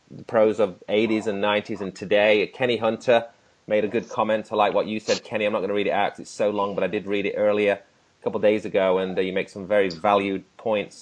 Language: English